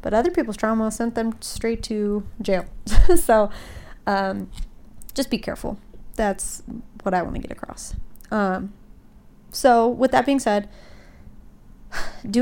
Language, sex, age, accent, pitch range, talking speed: English, female, 30-49, American, 200-245 Hz, 135 wpm